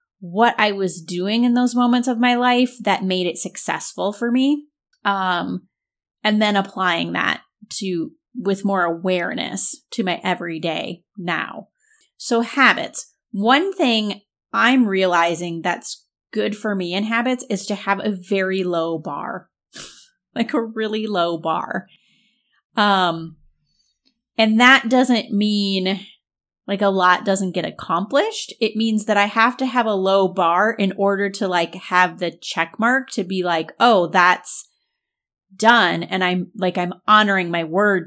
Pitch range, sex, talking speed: 180-230 Hz, female, 150 wpm